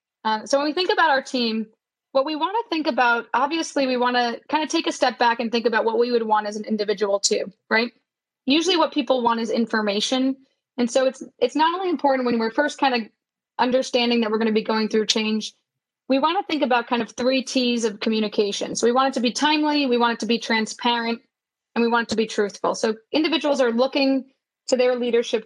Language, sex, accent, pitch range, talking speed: English, female, American, 225-270 Hz, 240 wpm